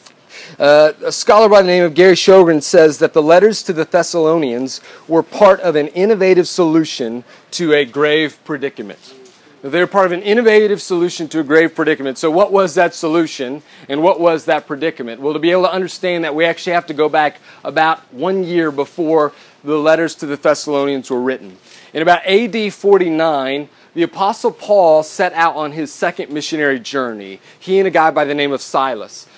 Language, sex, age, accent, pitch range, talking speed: English, male, 30-49, American, 145-180 Hz, 190 wpm